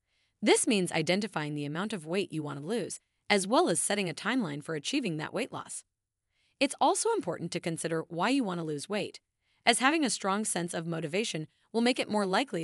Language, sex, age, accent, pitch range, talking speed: English, female, 30-49, American, 155-230 Hz, 215 wpm